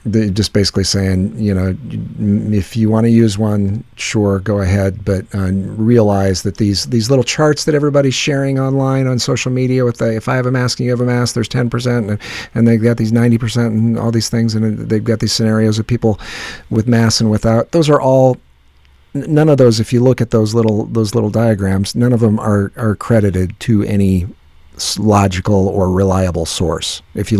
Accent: American